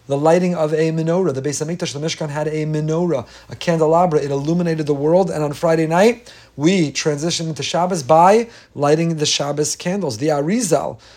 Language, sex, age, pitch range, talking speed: English, male, 40-59, 135-165 Hz, 185 wpm